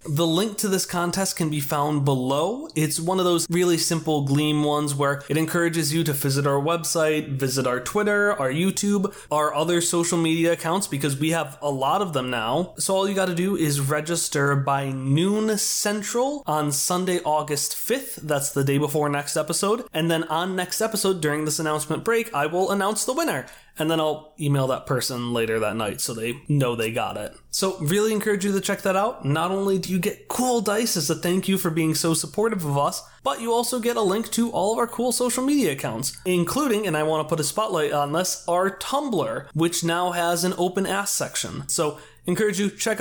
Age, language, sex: 20-39, English, male